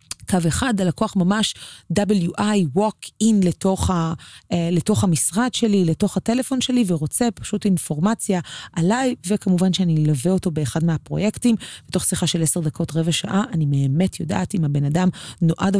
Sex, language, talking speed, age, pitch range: female, Hebrew, 140 wpm, 30-49, 155-195 Hz